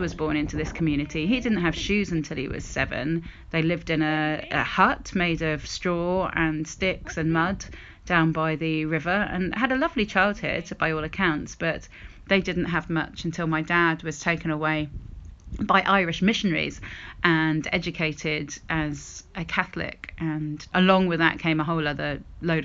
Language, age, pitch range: English, 30-49, 155-190 Hz